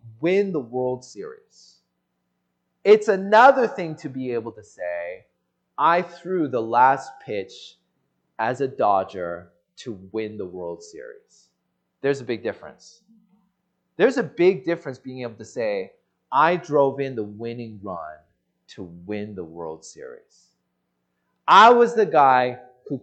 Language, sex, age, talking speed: English, male, 30-49, 140 wpm